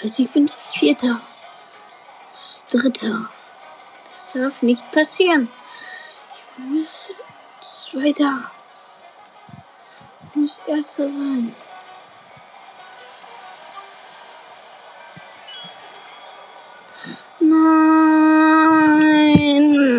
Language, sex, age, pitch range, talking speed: German, female, 20-39, 240-300 Hz, 55 wpm